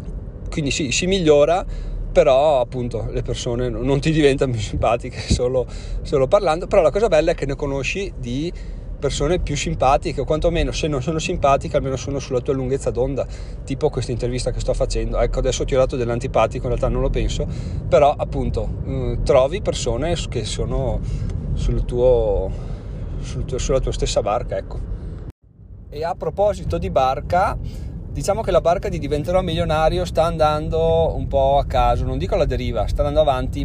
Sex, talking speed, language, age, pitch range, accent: male, 170 wpm, Italian, 40-59, 120-140 Hz, native